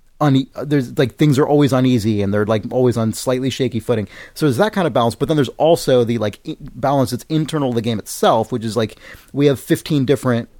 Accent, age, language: American, 30-49, English